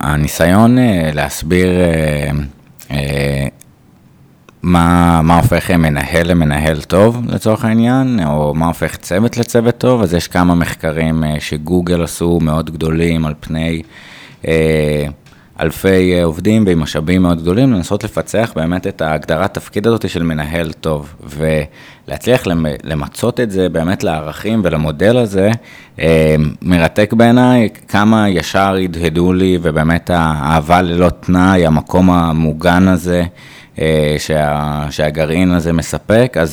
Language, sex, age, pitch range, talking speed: Hebrew, male, 20-39, 80-105 Hz, 120 wpm